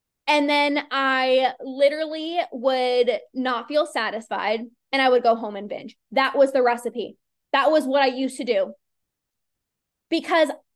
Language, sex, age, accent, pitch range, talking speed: English, female, 20-39, American, 250-310 Hz, 150 wpm